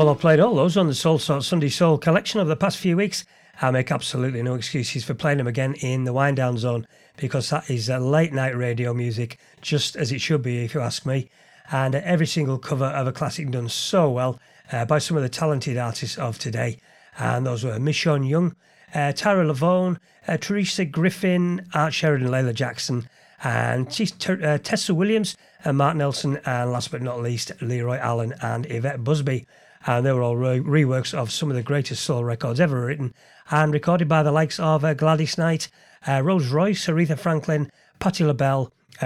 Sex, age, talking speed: male, 40-59, 205 wpm